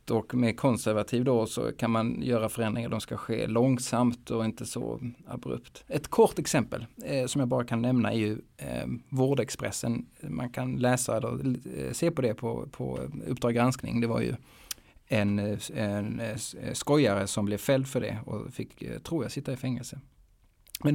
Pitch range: 110-130 Hz